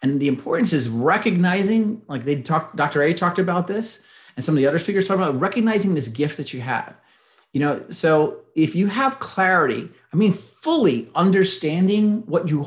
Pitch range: 140-195 Hz